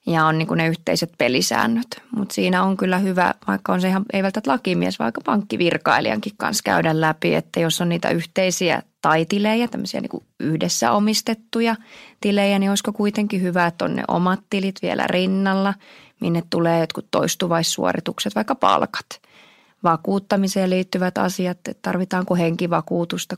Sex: female